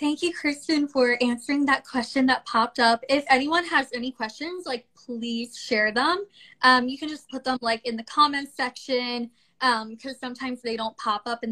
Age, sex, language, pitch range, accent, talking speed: 20-39, female, English, 235-285 Hz, American, 200 wpm